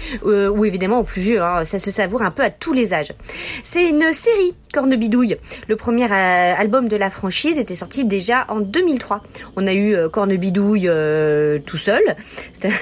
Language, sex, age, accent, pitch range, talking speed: French, female, 40-59, French, 195-265 Hz, 185 wpm